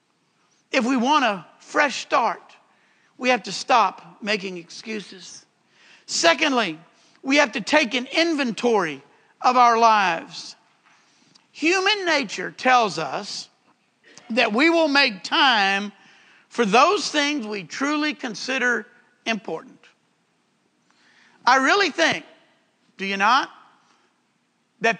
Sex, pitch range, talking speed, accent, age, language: male, 235-315 Hz, 110 wpm, American, 50-69, English